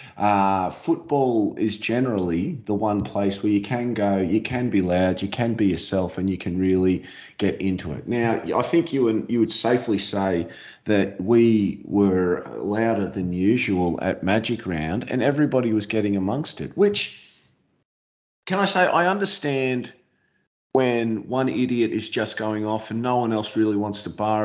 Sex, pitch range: male, 100-135 Hz